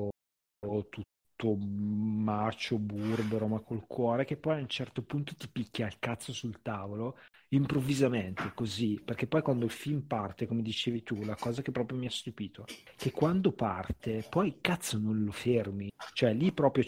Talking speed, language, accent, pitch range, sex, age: 170 wpm, Italian, native, 110-135 Hz, male, 40-59